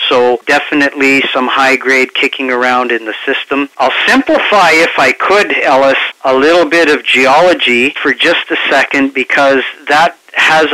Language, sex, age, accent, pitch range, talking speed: English, male, 40-59, American, 130-150 Hz, 150 wpm